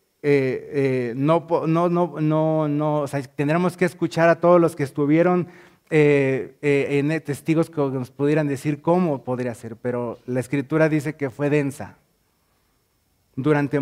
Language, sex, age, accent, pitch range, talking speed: Spanish, male, 40-59, Mexican, 125-170 Hz, 155 wpm